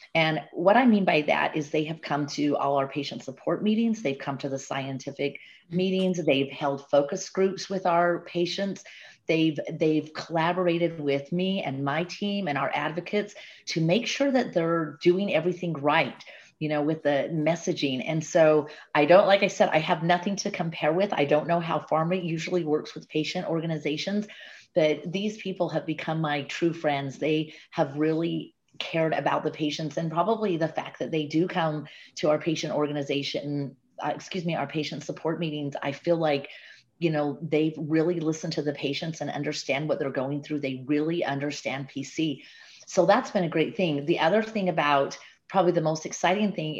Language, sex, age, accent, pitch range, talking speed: English, female, 30-49, American, 145-175 Hz, 185 wpm